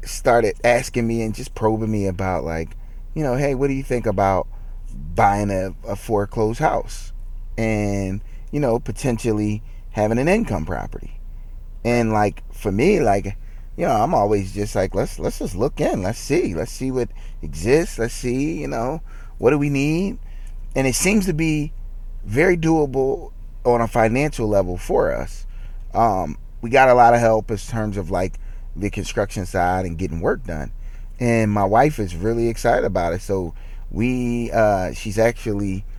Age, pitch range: 30-49, 95-115 Hz